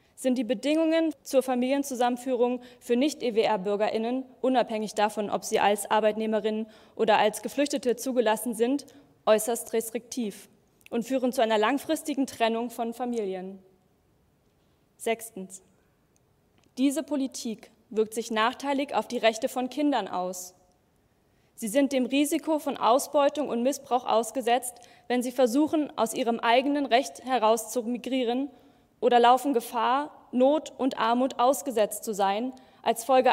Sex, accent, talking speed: female, German, 120 wpm